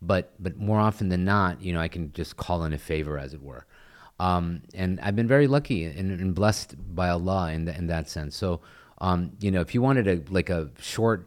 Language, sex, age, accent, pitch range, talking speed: English, male, 30-49, American, 80-95 Hz, 240 wpm